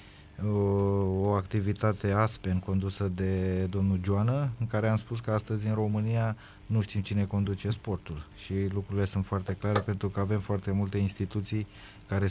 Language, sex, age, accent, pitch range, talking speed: Romanian, male, 20-39, native, 100-110 Hz, 160 wpm